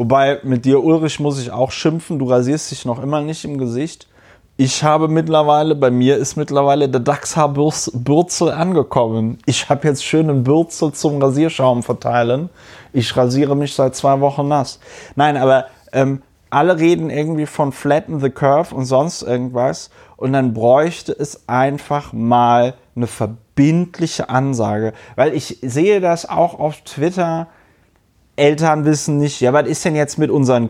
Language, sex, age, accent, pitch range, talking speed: German, male, 30-49, German, 125-150 Hz, 155 wpm